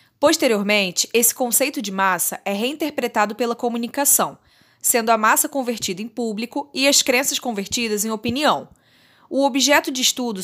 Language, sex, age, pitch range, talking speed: Portuguese, female, 20-39, 195-265 Hz, 145 wpm